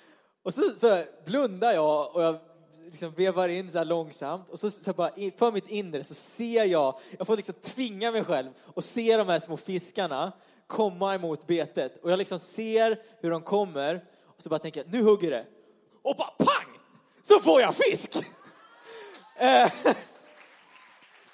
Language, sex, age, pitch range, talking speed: Swedish, male, 20-39, 195-325 Hz, 175 wpm